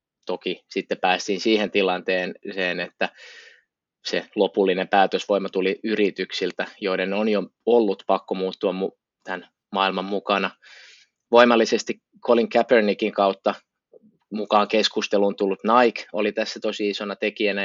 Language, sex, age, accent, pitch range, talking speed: Finnish, male, 20-39, native, 95-110 Hz, 110 wpm